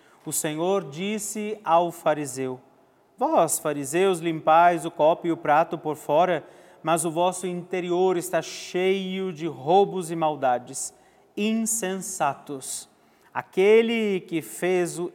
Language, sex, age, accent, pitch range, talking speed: Portuguese, male, 40-59, Brazilian, 160-200 Hz, 120 wpm